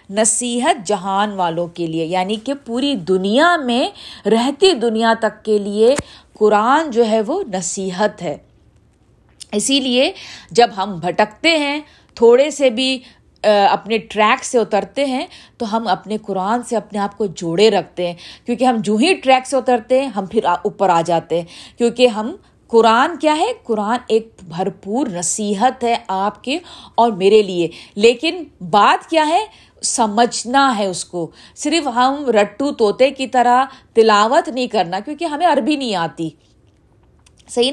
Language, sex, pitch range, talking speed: Urdu, female, 200-265 Hz, 155 wpm